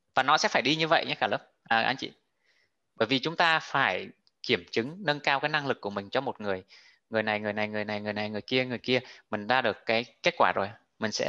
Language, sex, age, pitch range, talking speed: Vietnamese, male, 20-39, 105-135 Hz, 280 wpm